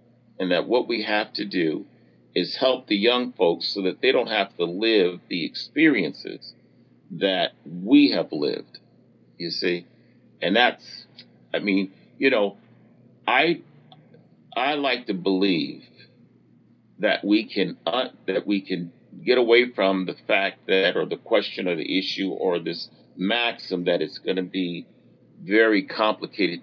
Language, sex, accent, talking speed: English, male, American, 150 wpm